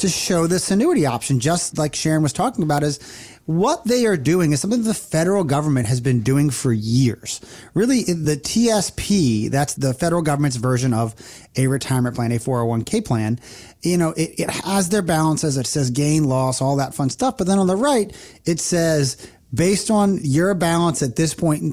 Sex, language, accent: male, English, American